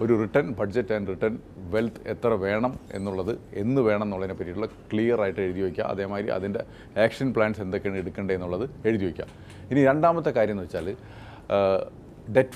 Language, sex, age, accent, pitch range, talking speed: Malayalam, male, 30-49, native, 95-120 Hz, 150 wpm